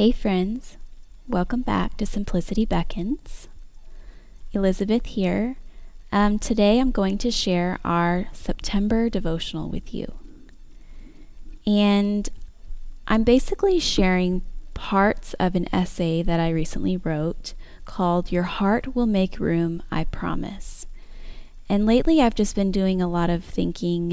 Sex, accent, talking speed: female, American, 125 wpm